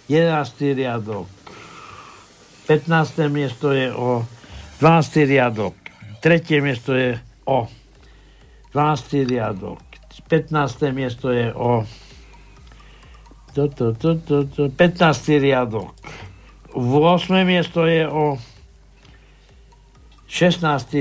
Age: 60-79